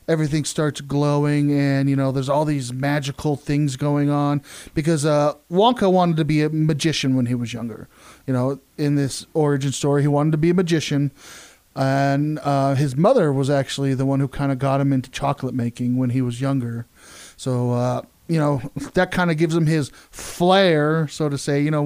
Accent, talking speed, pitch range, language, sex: American, 200 wpm, 135-155 Hz, English, male